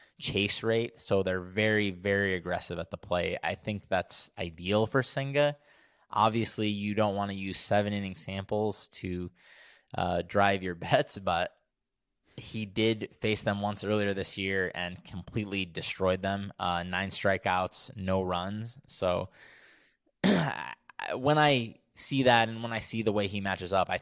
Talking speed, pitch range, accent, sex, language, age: 155 wpm, 95-110 Hz, American, male, English, 20-39